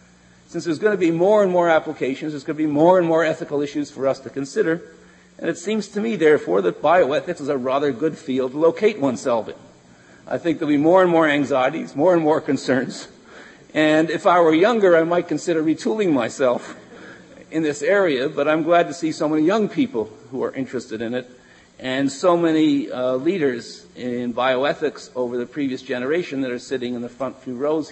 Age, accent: 50-69, American